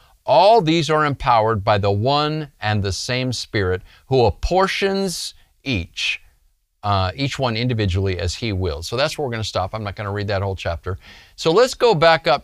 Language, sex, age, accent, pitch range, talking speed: English, male, 50-69, American, 90-125 Hz, 190 wpm